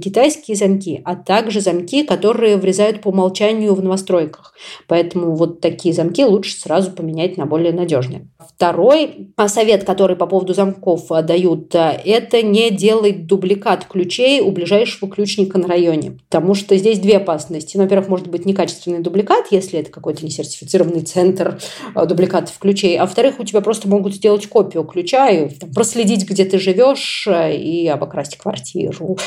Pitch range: 175-210 Hz